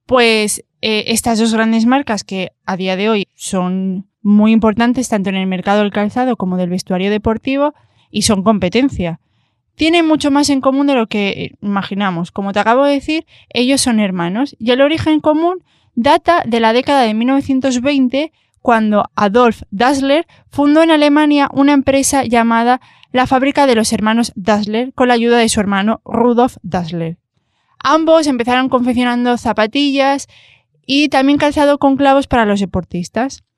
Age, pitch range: 20-39, 215-275 Hz